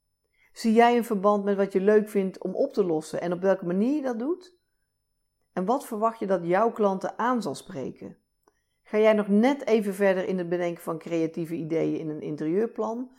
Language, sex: Dutch, female